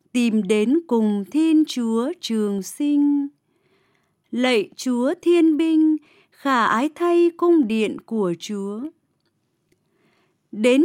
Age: 20-39